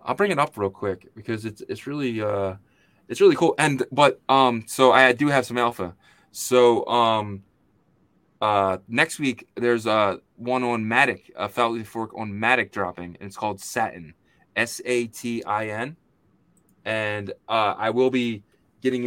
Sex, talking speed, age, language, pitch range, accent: male, 160 wpm, 20-39, English, 105-130 Hz, American